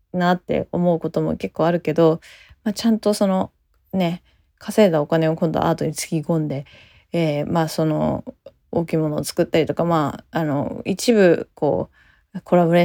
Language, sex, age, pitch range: Japanese, female, 20-39, 175-260 Hz